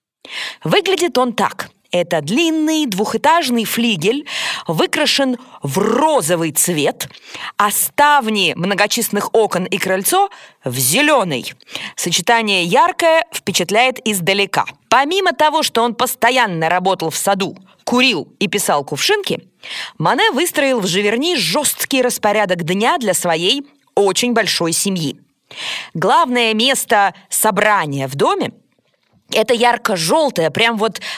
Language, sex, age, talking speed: Russian, female, 20-39, 110 wpm